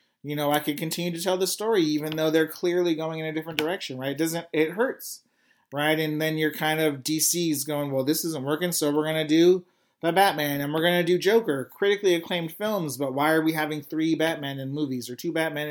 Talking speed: 240 wpm